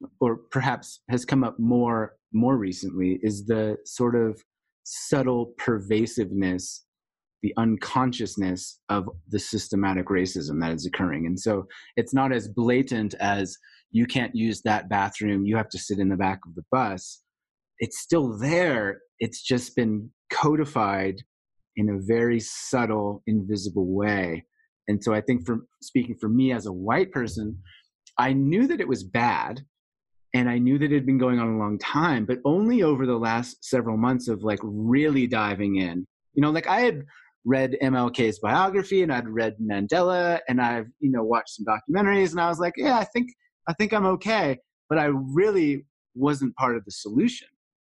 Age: 30-49